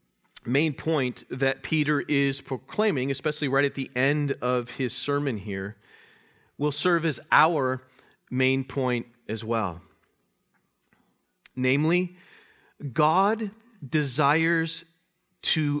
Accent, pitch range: American, 115-160 Hz